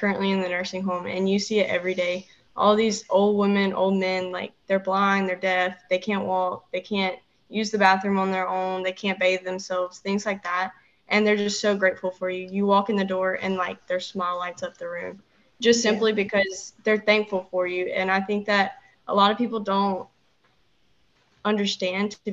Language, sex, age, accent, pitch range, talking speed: English, female, 20-39, American, 185-205 Hz, 210 wpm